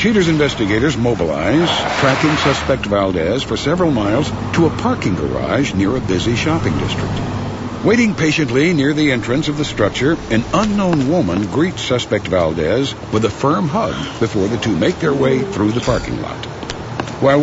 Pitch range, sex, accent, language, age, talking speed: 110-150 Hz, male, American, English, 60-79, 160 wpm